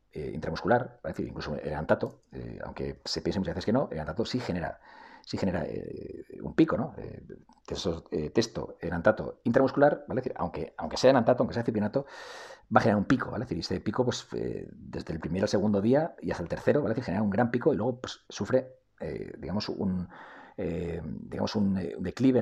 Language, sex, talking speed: Spanish, male, 230 wpm